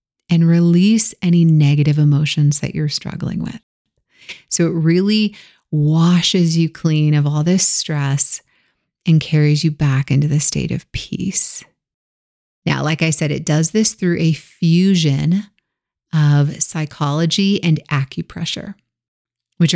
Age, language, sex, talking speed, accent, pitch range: 30-49, English, female, 130 wpm, American, 150-175 Hz